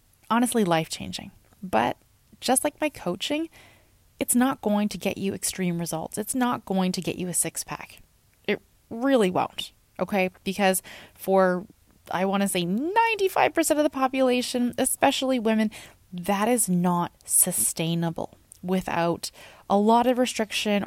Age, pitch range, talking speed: 20-39, 170-220 Hz, 145 wpm